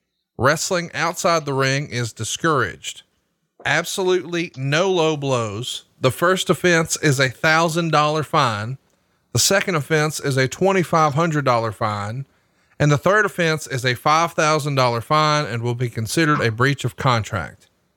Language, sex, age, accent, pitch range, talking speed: English, male, 40-59, American, 125-160 Hz, 135 wpm